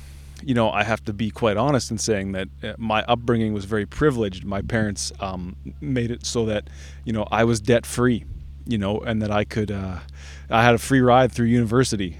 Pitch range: 95-120 Hz